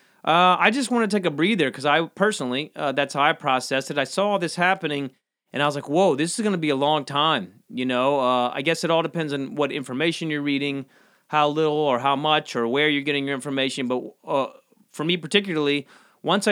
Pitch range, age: 140-175 Hz, 30-49